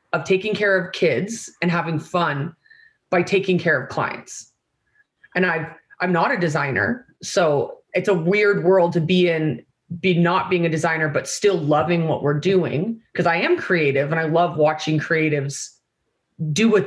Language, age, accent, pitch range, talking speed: English, 30-49, American, 160-200 Hz, 175 wpm